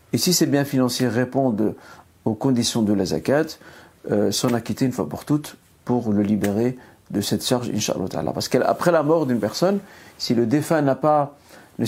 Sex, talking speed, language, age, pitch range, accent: male, 185 wpm, French, 50-69, 105-130 Hz, French